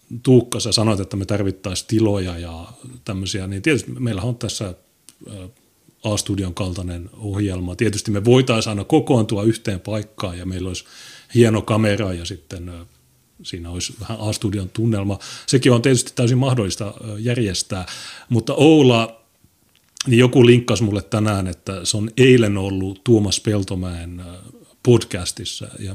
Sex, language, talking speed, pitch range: male, Finnish, 135 wpm, 95-120 Hz